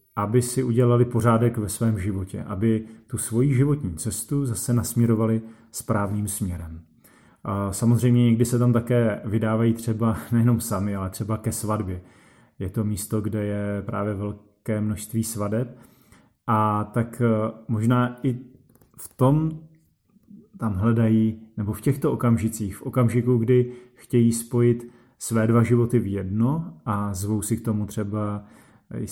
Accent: native